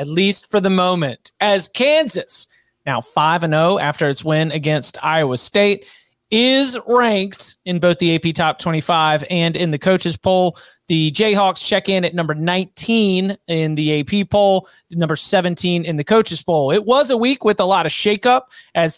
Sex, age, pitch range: male, 30-49, 165-210 Hz